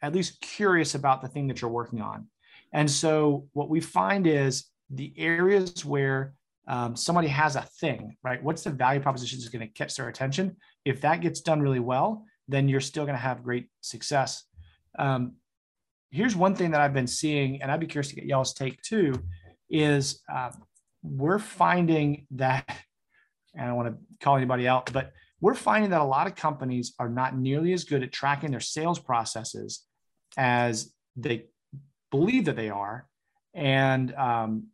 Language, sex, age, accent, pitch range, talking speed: English, male, 30-49, American, 125-155 Hz, 180 wpm